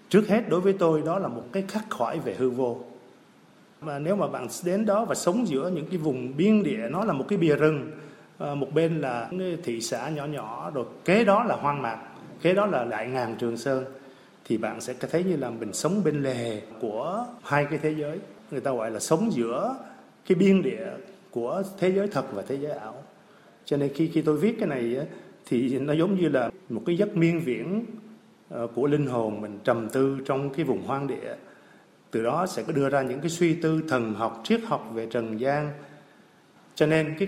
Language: Vietnamese